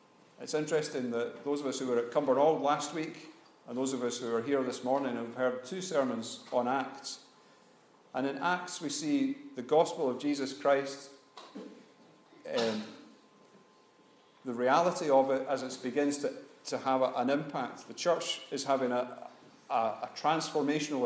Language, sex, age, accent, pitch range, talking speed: English, male, 40-59, British, 120-145 Hz, 160 wpm